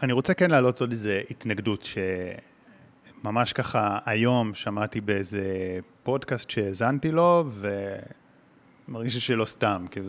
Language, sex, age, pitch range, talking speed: Hebrew, male, 30-49, 100-135 Hz, 115 wpm